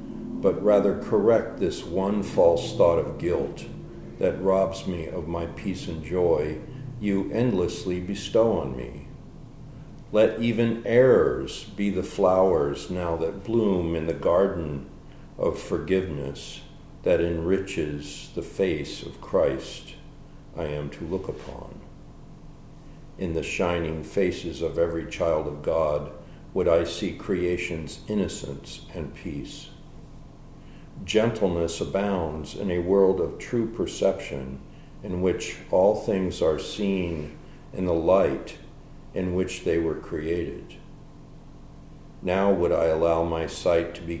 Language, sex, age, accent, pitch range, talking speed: English, male, 50-69, American, 80-105 Hz, 125 wpm